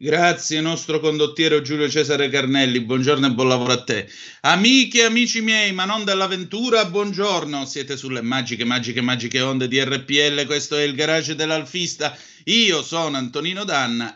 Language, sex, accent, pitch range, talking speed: Italian, male, native, 125-165 Hz, 155 wpm